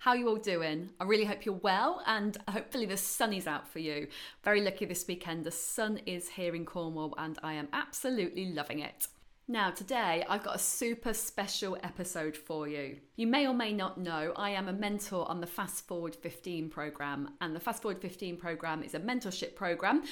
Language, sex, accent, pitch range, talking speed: English, female, British, 170-230 Hz, 205 wpm